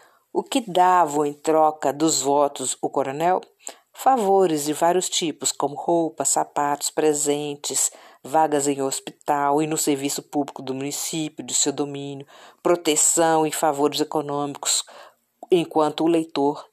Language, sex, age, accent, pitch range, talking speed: Portuguese, female, 50-69, Brazilian, 145-180 Hz, 130 wpm